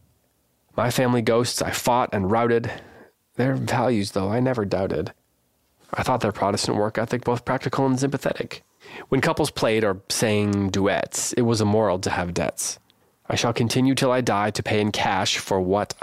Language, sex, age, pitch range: English, male, 20-39, 95-115 Hz